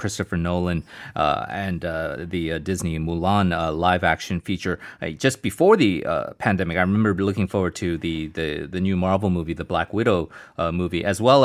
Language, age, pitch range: Korean, 30-49, 95-135 Hz